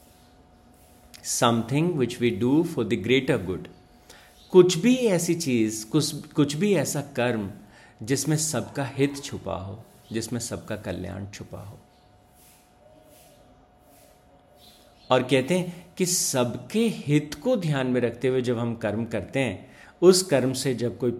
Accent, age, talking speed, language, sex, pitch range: native, 50-69, 135 wpm, Hindi, male, 100-140 Hz